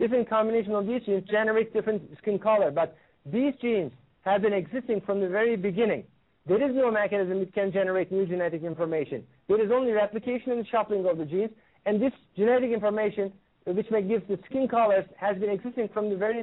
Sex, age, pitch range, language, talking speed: male, 50-69, 195-235 Hz, English, 195 wpm